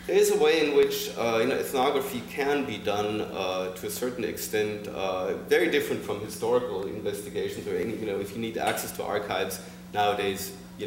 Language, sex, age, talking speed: English, male, 30-49, 190 wpm